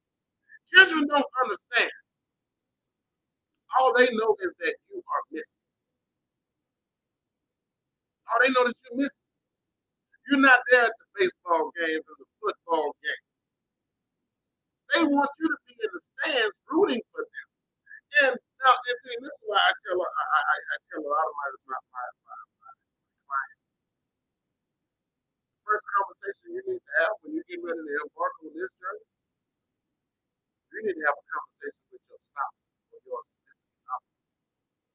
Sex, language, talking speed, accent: male, English, 145 wpm, American